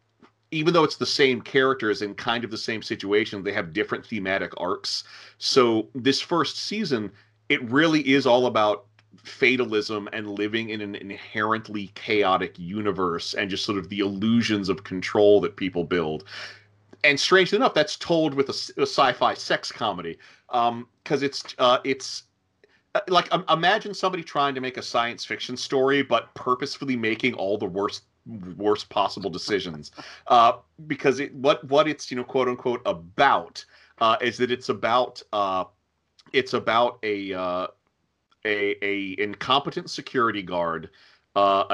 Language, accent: English, American